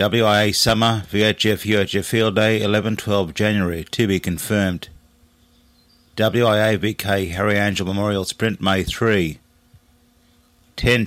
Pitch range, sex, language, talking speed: 90-110 Hz, male, English, 110 wpm